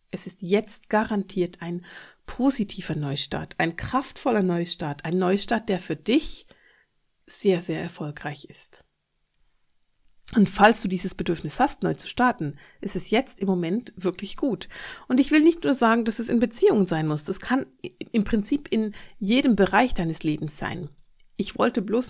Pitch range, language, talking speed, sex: 175-225 Hz, German, 165 wpm, female